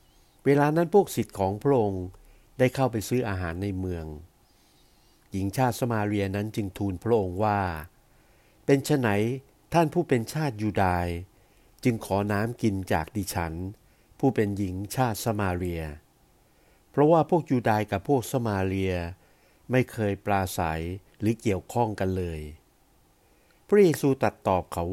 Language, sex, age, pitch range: Thai, male, 60-79, 95-125 Hz